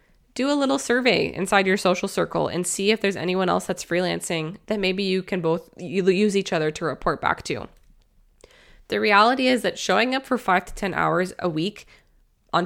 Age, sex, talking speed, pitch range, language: 20-39, female, 200 wpm, 175-225 Hz, English